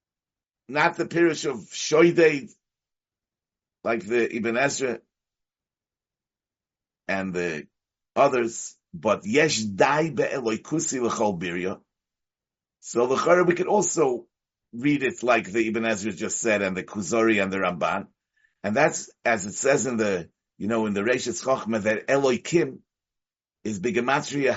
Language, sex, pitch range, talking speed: English, male, 135-180 Hz, 140 wpm